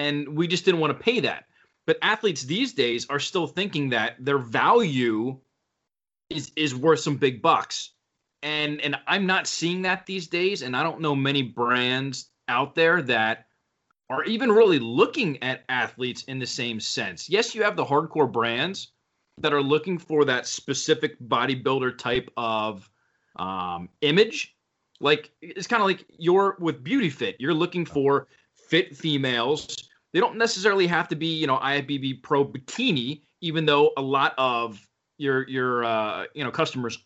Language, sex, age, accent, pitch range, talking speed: English, male, 30-49, American, 130-165 Hz, 170 wpm